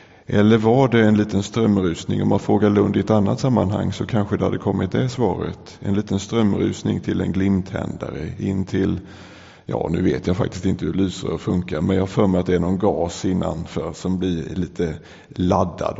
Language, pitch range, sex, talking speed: English, 95-110 Hz, male, 195 wpm